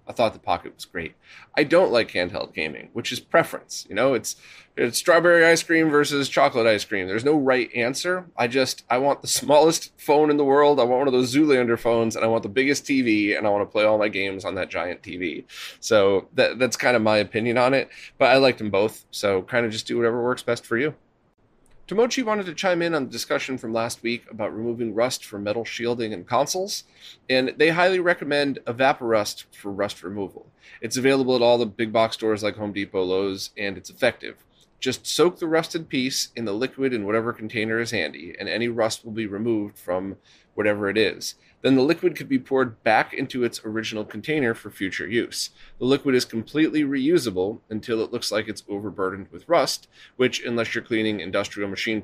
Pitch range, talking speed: 110-140 Hz, 215 wpm